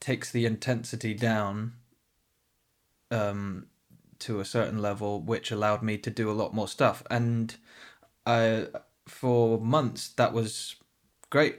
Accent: British